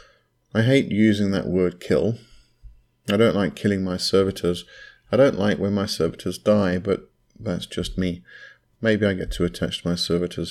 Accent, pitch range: British, 90-105 Hz